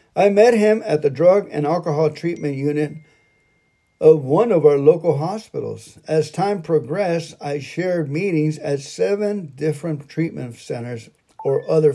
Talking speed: 145 wpm